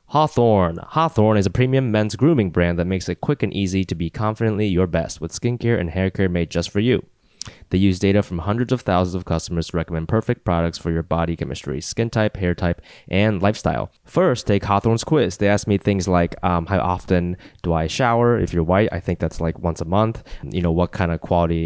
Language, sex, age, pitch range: English, male, 20-39, 85-110 Hz